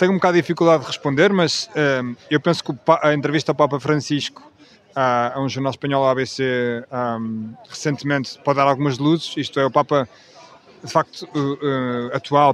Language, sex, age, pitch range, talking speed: Portuguese, male, 20-39, 135-155 Hz, 195 wpm